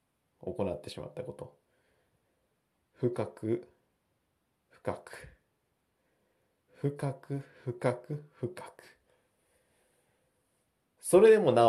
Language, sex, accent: Japanese, male, native